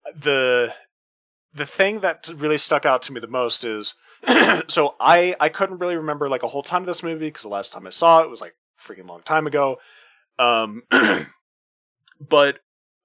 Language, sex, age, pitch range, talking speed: English, male, 30-49, 125-165 Hz, 190 wpm